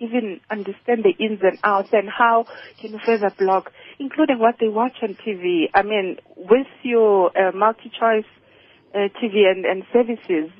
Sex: female